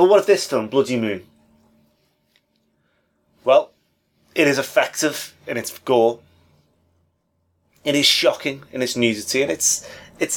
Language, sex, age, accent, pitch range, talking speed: English, male, 30-49, British, 95-130 Hz, 135 wpm